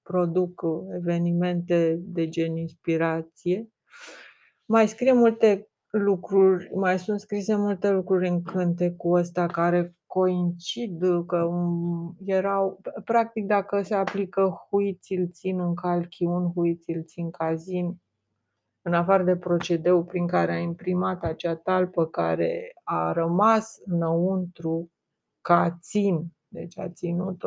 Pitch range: 165-185 Hz